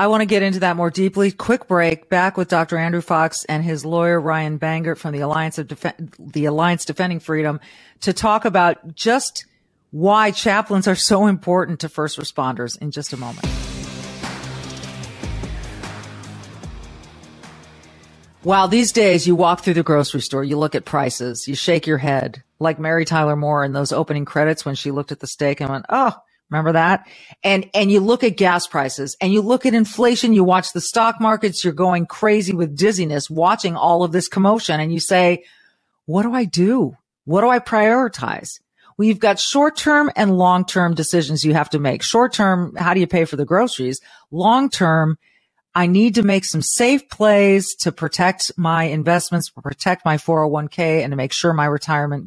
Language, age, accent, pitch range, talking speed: English, 40-59, American, 145-195 Hz, 185 wpm